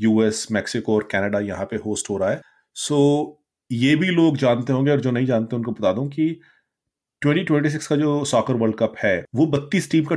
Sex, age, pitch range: male, 30-49, 110-145 Hz